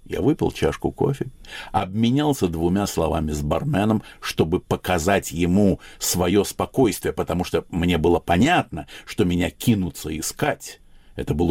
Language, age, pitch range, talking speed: Russian, 60-79, 85-110 Hz, 130 wpm